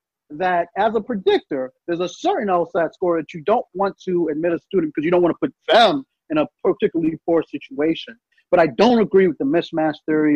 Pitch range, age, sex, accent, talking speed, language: 160-260 Hz, 30-49, male, American, 215 wpm, English